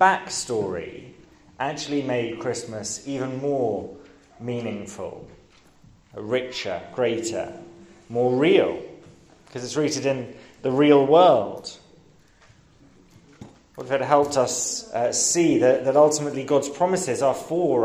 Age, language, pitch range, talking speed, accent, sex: 30-49, English, 125-155 Hz, 110 wpm, British, male